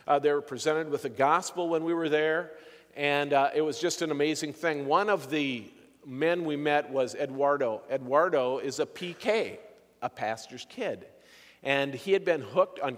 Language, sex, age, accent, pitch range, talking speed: English, male, 50-69, American, 135-165 Hz, 185 wpm